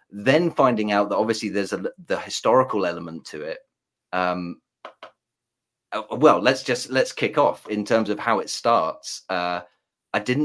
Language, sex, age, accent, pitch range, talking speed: English, male, 30-49, British, 95-120 Hz, 160 wpm